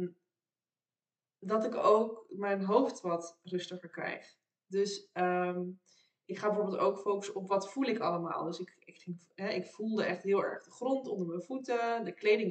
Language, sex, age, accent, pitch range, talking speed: Dutch, female, 20-39, Dutch, 175-210 Hz, 175 wpm